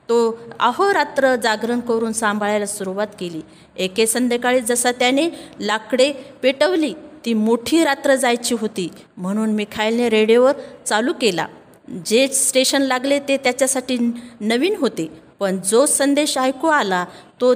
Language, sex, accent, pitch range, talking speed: Marathi, female, native, 210-270 Hz, 125 wpm